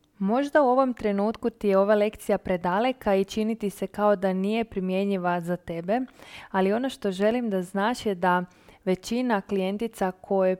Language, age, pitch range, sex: Croatian, 20-39, 185-225 Hz, female